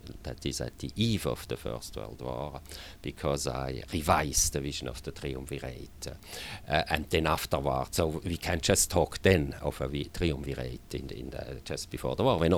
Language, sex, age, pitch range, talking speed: English, male, 50-69, 75-95 Hz, 205 wpm